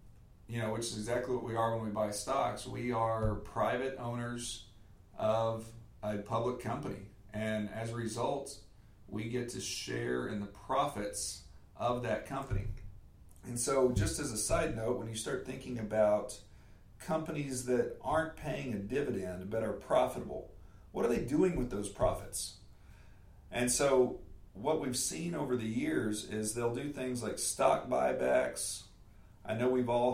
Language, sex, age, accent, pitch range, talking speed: English, male, 40-59, American, 100-125 Hz, 160 wpm